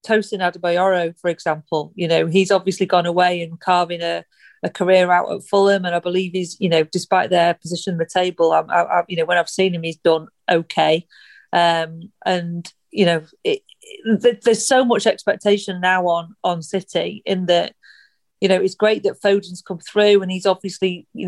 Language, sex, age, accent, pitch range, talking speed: English, female, 40-59, British, 175-205 Hz, 190 wpm